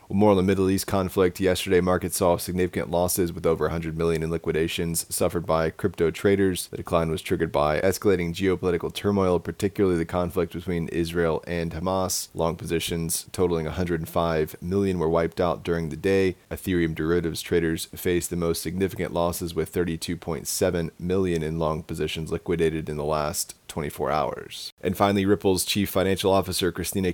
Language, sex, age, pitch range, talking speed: English, male, 30-49, 80-95 Hz, 165 wpm